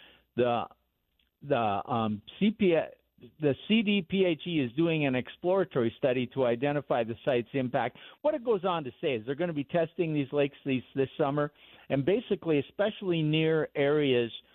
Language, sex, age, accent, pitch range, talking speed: English, male, 50-69, American, 120-155 Hz, 175 wpm